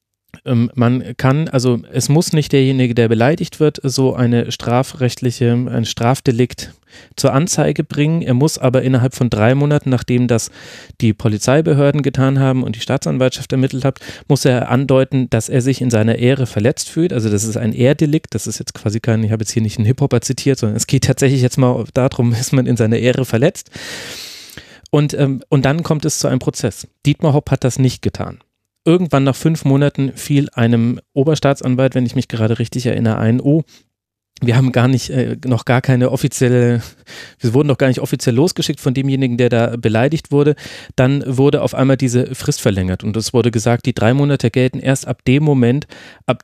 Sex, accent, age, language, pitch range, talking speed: male, German, 30-49, German, 120-140 Hz, 195 wpm